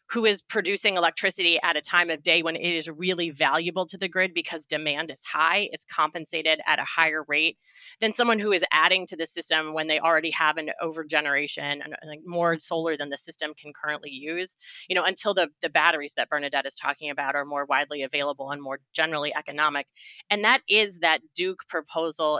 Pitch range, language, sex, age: 150-175 Hz, English, female, 20-39